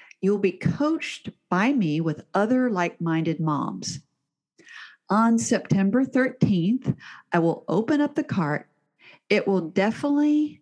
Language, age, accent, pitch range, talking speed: English, 50-69, American, 180-255 Hz, 120 wpm